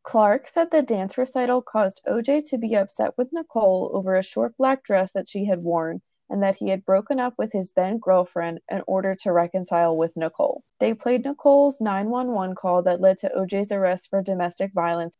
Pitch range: 185-245 Hz